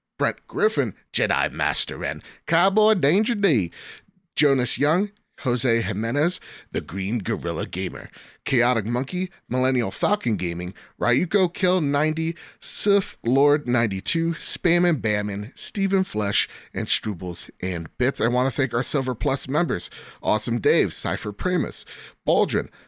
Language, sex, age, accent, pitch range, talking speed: English, male, 30-49, American, 120-185 Hz, 130 wpm